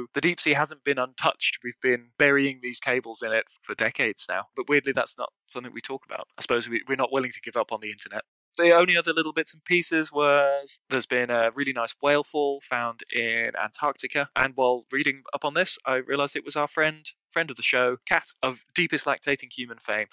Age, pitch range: 20-39, 115-140 Hz